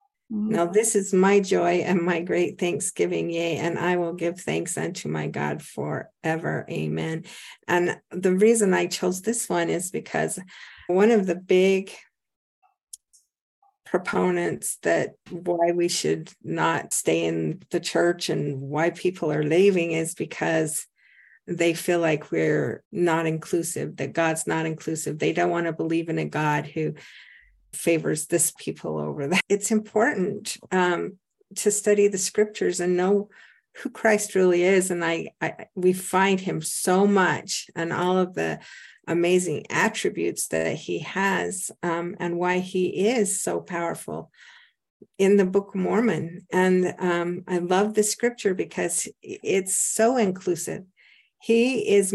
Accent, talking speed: American, 145 wpm